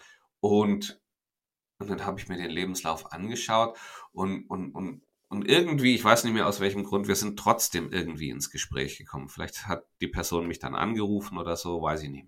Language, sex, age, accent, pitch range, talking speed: German, male, 40-59, German, 90-115 Hz, 195 wpm